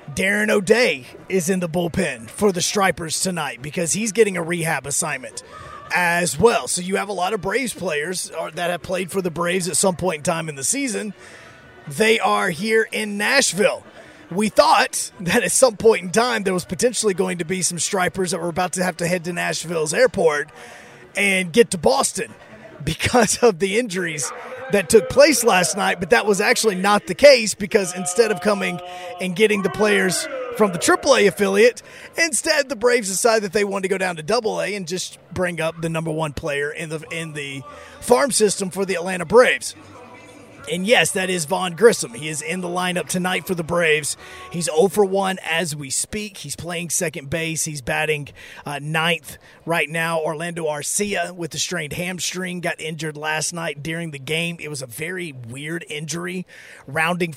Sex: male